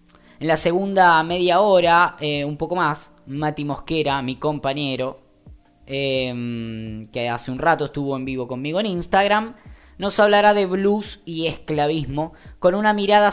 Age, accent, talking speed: 10-29, Argentinian, 150 wpm